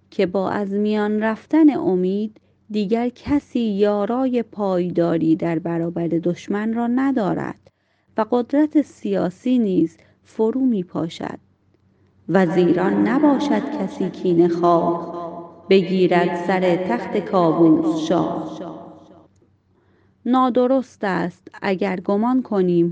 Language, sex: Persian, female